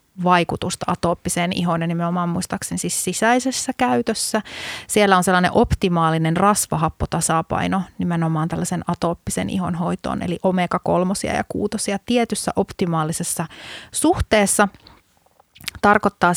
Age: 30-49